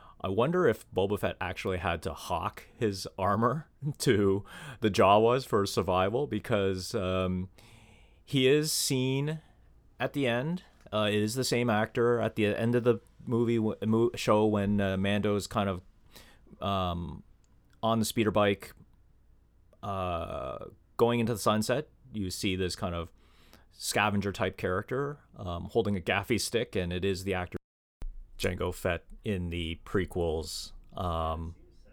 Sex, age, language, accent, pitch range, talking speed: male, 30-49, English, American, 85-110 Hz, 145 wpm